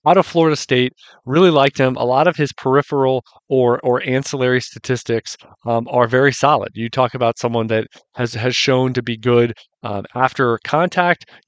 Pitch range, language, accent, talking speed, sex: 120-140 Hz, English, American, 180 wpm, male